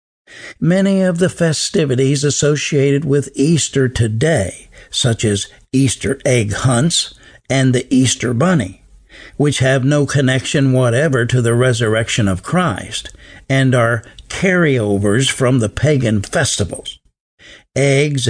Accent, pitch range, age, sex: American, 115-145 Hz, 60-79, male